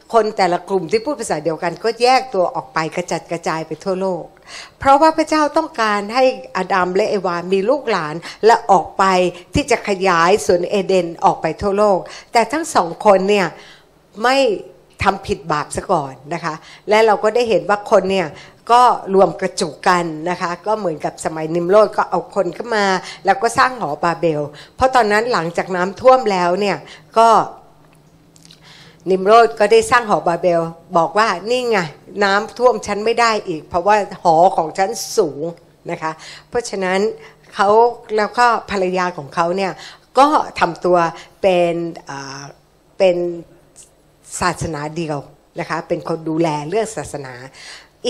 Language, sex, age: Thai, female, 60-79